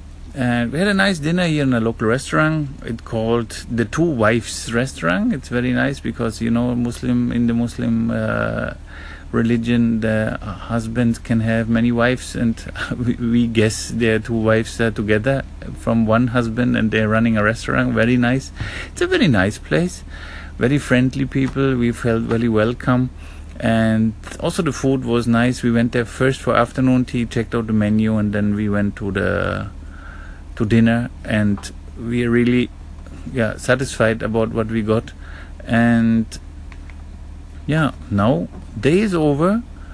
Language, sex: German, male